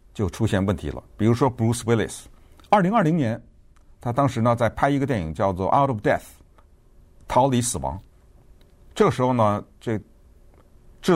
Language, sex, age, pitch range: Chinese, male, 50-69, 85-125 Hz